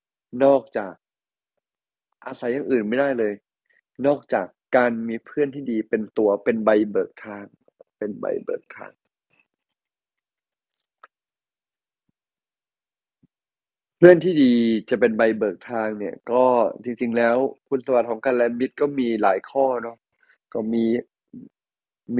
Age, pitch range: 20-39, 115-135 Hz